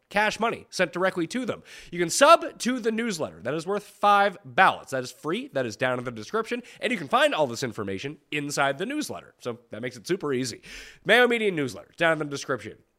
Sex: male